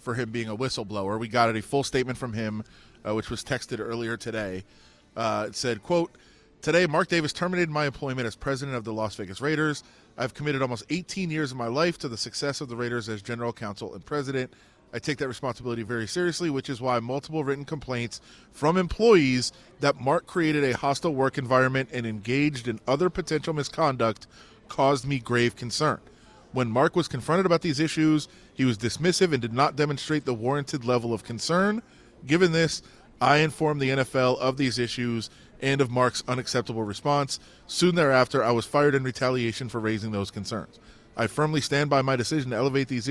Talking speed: 190 wpm